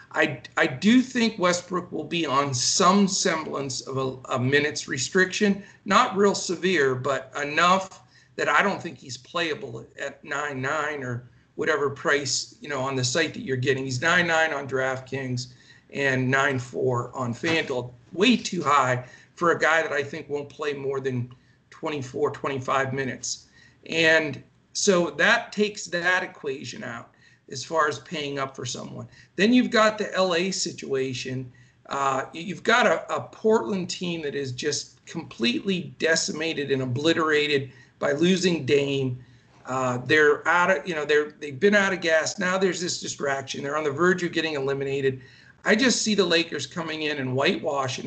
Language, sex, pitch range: English, male, 135-180 Hz